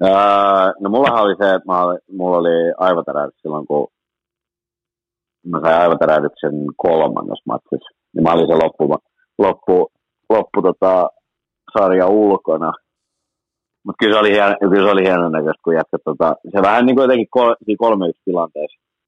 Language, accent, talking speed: Finnish, native, 115 wpm